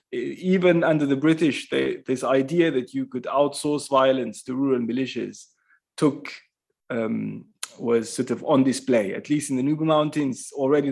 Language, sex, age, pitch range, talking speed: English, male, 30-49, 130-165 Hz, 160 wpm